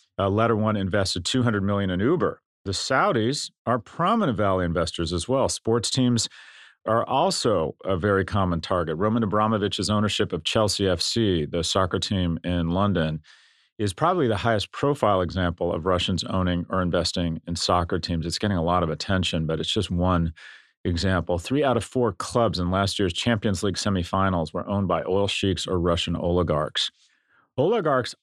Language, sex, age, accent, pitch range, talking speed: English, male, 40-59, American, 90-110 Hz, 170 wpm